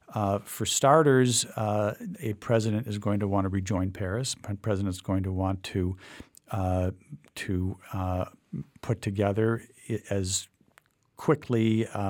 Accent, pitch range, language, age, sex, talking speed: American, 95-110 Hz, English, 50-69, male, 140 wpm